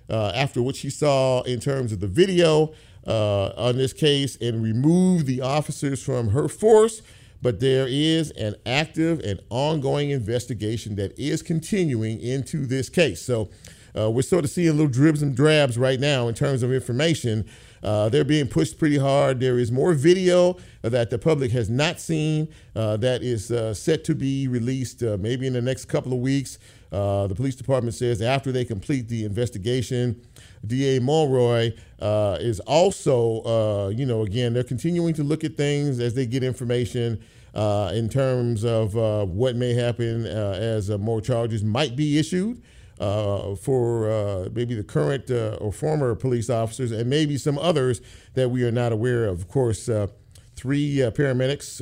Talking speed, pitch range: 180 wpm, 115-140 Hz